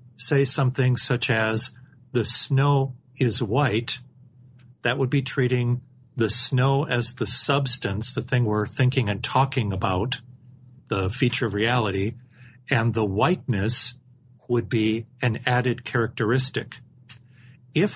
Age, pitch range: 40-59, 120-135 Hz